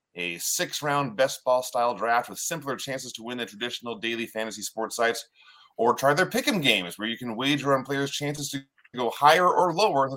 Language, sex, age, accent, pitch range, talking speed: English, male, 30-49, American, 120-165 Hz, 210 wpm